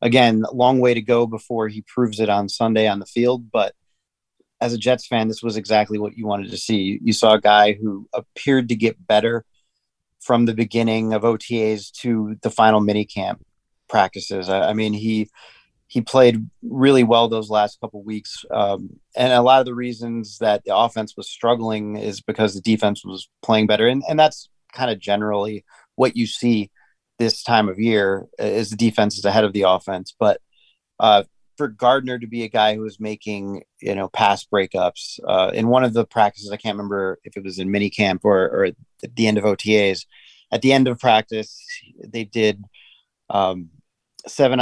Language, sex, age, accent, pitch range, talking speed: English, male, 30-49, American, 100-115 Hz, 195 wpm